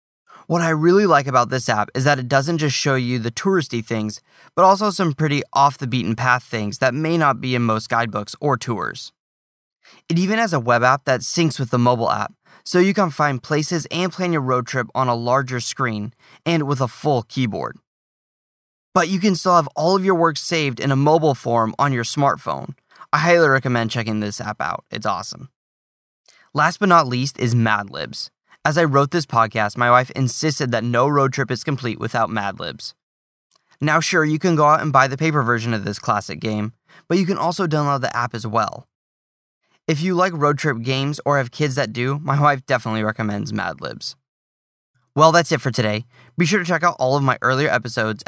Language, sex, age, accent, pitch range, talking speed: English, male, 20-39, American, 115-155 Hz, 210 wpm